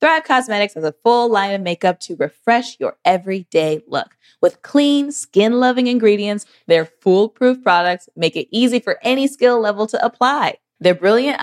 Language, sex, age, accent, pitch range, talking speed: English, female, 20-39, American, 175-245 Hz, 165 wpm